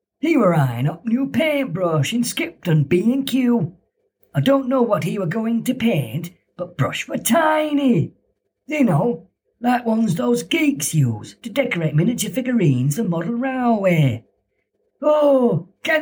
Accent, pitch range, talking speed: British, 160-265 Hz, 150 wpm